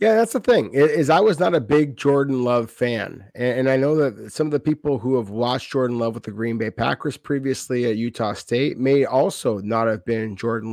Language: English